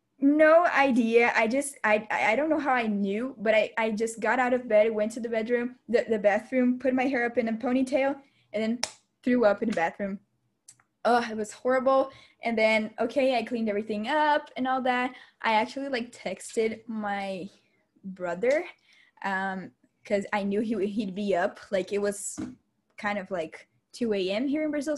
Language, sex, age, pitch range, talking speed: English, female, 10-29, 200-260 Hz, 190 wpm